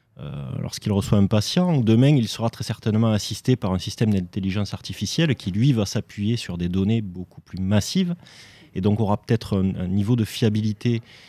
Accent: French